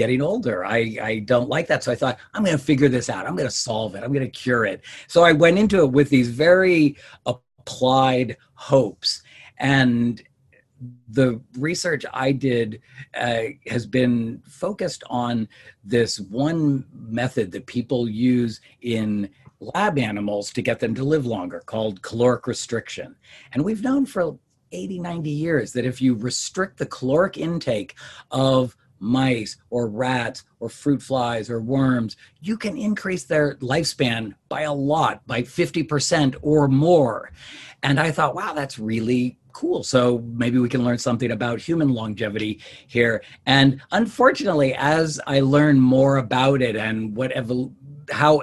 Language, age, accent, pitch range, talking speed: English, 50-69, American, 115-145 Hz, 160 wpm